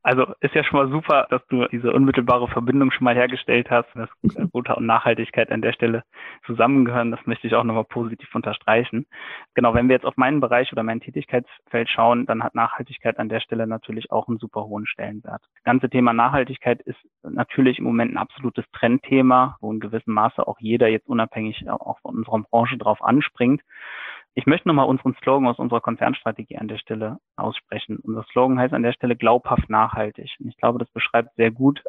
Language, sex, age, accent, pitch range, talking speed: German, male, 20-39, German, 115-130 Hz, 200 wpm